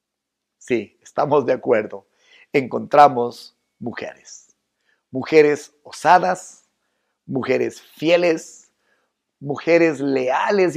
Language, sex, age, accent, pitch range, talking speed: Spanish, male, 50-69, Mexican, 135-205 Hz, 65 wpm